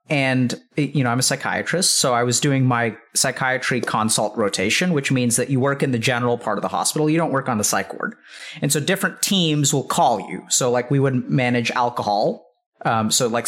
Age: 30-49